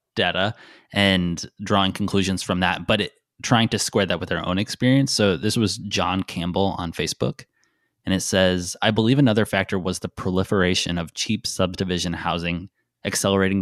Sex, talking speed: male, 165 wpm